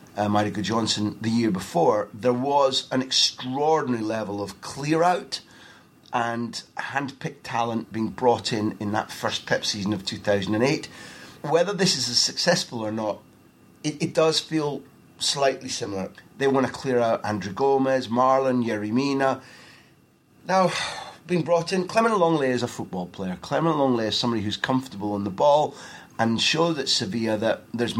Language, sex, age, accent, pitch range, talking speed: English, male, 30-49, British, 110-140 Hz, 160 wpm